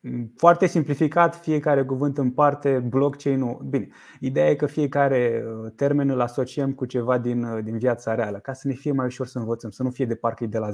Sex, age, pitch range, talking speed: male, 20-39, 110-140 Hz, 195 wpm